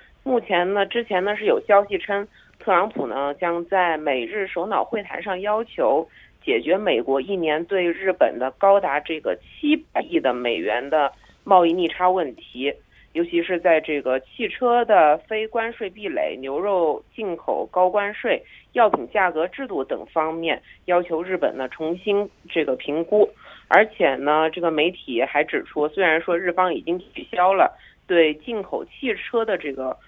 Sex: female